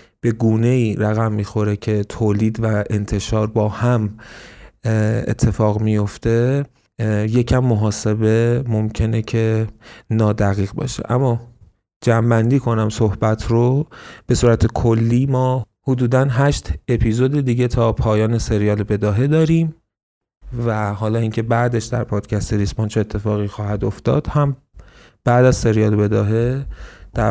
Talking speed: 115 wpm